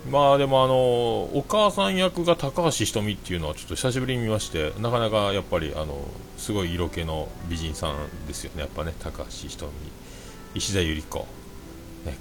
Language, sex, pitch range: Japanese, male, 80-120 Hz